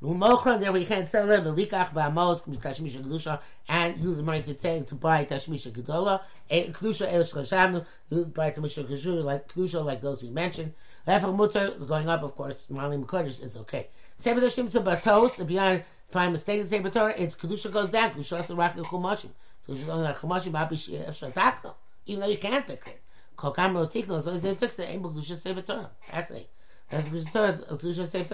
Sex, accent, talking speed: male, American, 110 wpm